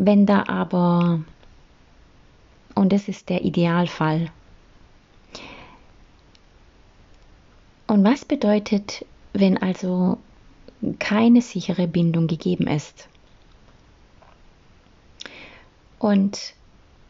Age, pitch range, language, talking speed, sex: 30-49, 175-225 Hz, German, 65 wpm, female